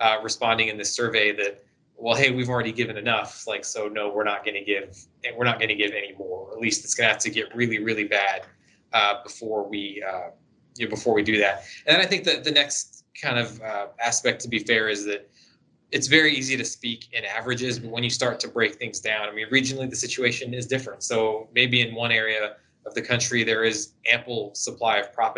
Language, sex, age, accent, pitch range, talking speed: English, male, 20-39, American, 105-125 Hz, 240 wpm